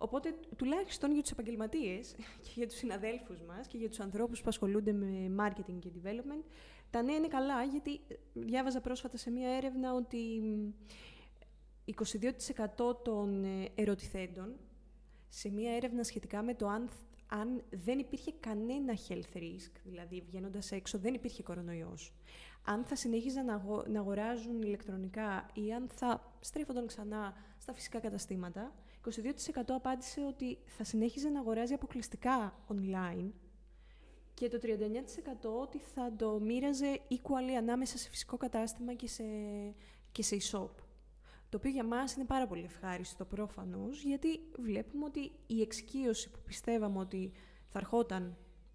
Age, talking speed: 20-39, 135 wpm